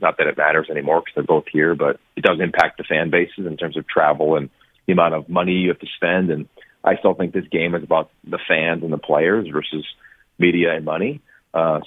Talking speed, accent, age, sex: 240 wpm, American, 40-59, male